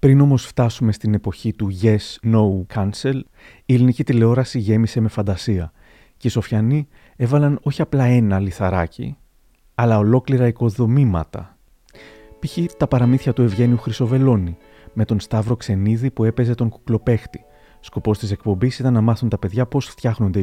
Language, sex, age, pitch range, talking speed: Greek, male, 30-49, 105-130 Hz, 145 wpm